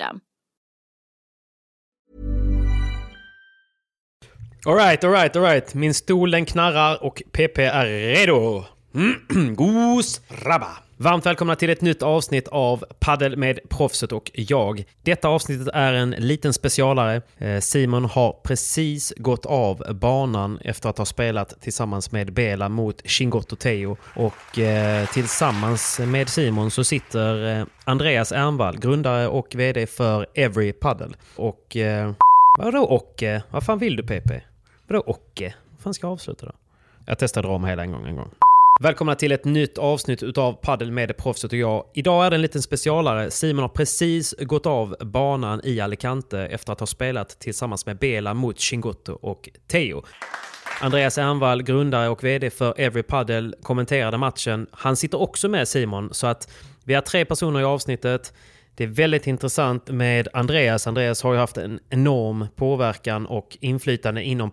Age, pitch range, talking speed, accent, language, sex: 30-49, 110-145 Hz, 150 wpm, native, Swedish, male